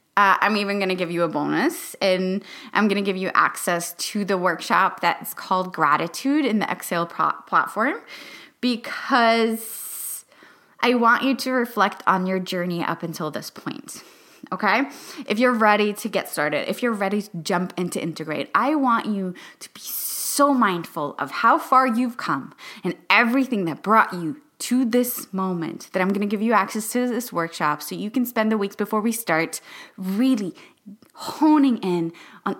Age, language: 20-39, English